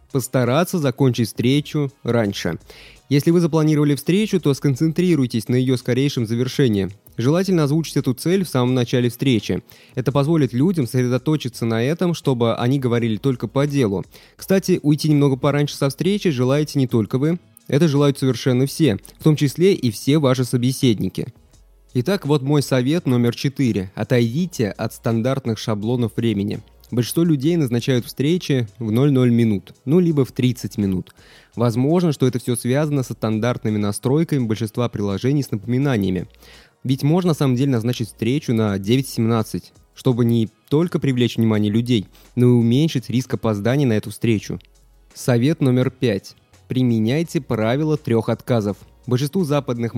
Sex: male